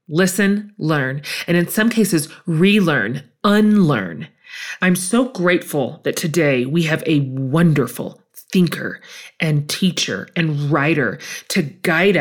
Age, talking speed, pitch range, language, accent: 30-49, 120 wpm, 155-195 Hz, English, American